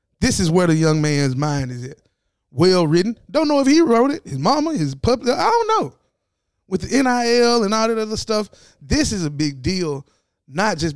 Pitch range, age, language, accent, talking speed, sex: 145-215 Hz, 20-39, English, American, 215 wpm, male